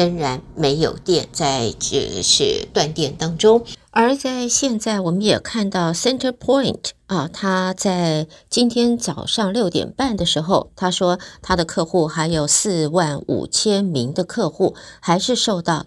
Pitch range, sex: 155-215 Hz, female